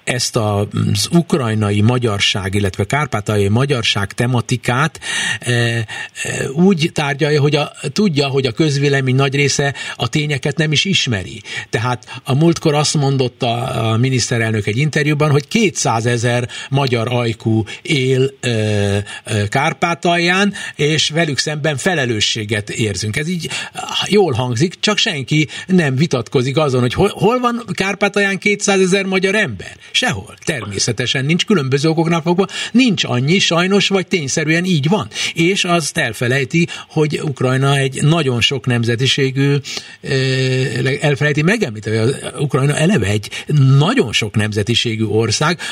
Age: 60-79